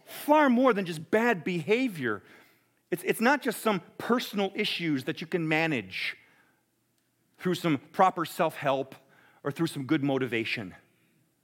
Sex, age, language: male, 40-59, English